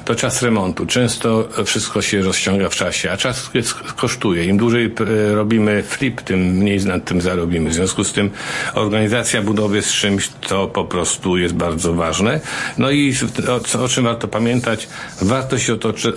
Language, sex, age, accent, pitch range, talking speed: Polish, male, 50-69, native, 95-110 Hz, 165 wpm